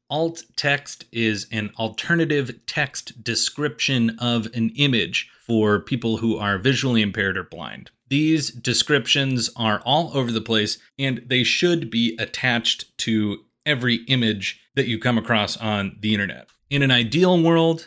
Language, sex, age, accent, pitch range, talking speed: English, male, 30-49, American, 110-130 Hz, 150 wpm